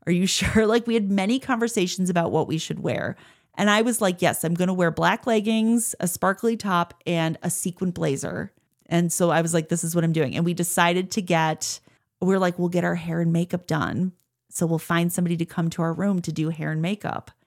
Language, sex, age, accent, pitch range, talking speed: English, female, 30-49, American, 170-220 Hz, 240 wpm